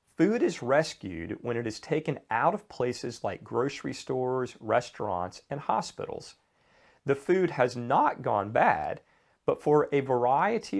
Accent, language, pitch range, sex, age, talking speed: American, English, 105-140 Hz, male, 40-59, 145 wpm